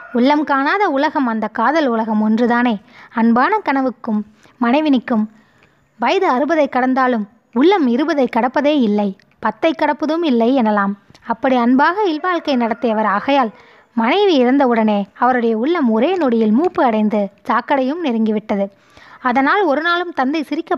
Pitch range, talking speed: 225-290 Hz, 120 wpm